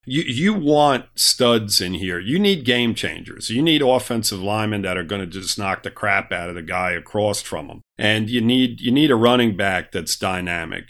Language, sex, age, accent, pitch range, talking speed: English, male, 50-69, American, 105-140 Hz, 215 wpm